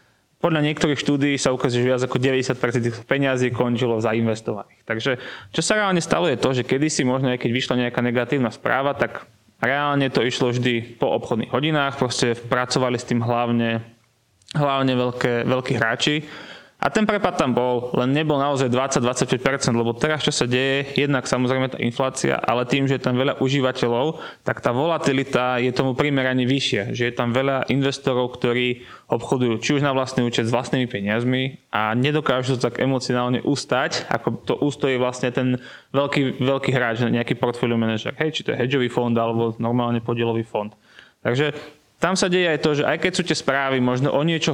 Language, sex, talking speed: Slovak, male, 180 wpm